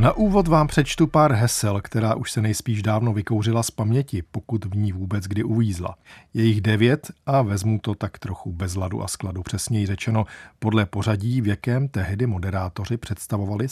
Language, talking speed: Czech, 170 wpm